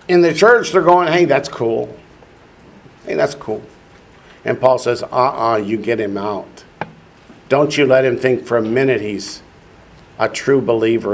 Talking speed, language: 165 wpm, English